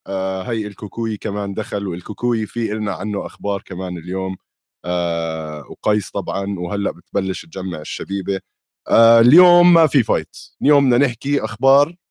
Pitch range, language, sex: 90-115 Hz, Arabic, male